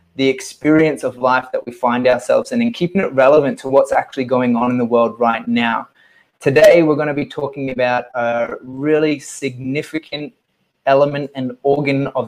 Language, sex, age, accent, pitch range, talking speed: English, male, 20-39, Australian, 130-150 Hz, 180 wpm